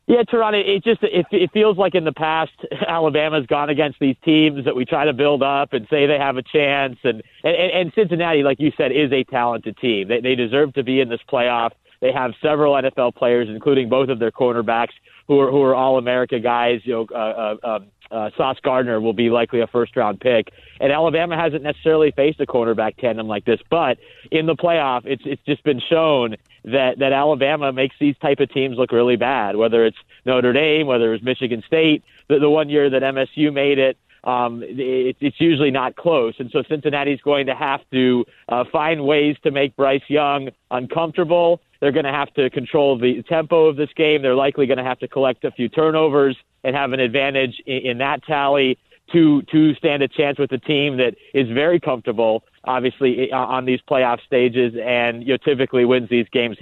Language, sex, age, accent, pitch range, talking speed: English, male, 40-59, American, 125-150 Hz, 210 wpm